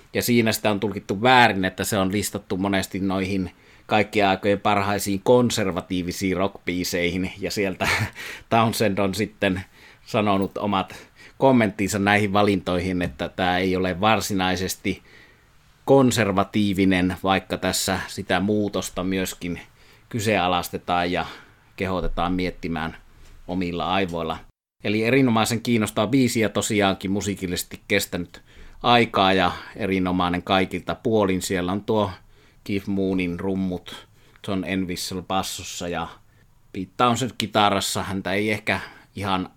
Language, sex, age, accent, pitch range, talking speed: Finnish, male, 30-49, native, 90-105 Hz, 115 wpm